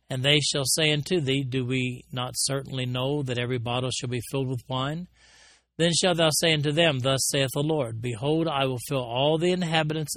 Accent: American